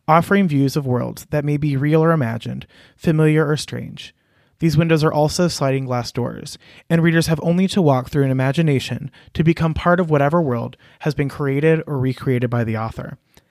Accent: American